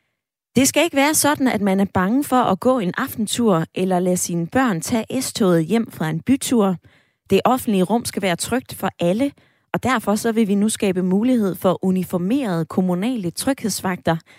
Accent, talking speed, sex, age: native, 185 wpm, female, 20-39